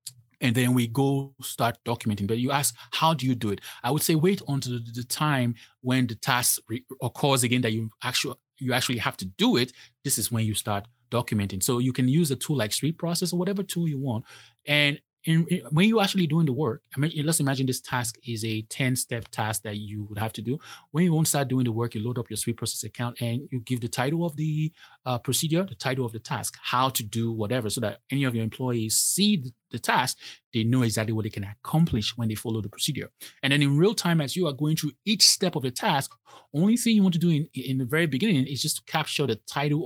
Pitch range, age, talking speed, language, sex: 115-150 Hz, 30-49, 250 wpm, English, male